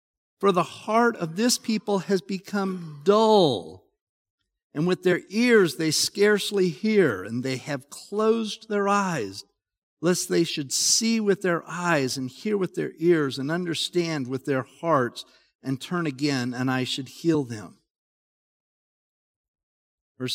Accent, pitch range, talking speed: American, 135-210 Hz, 140 wpm